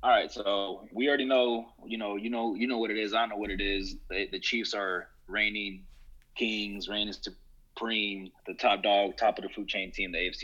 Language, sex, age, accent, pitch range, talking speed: English, male, 30-49, American, 100-120 Hz, 230 wpm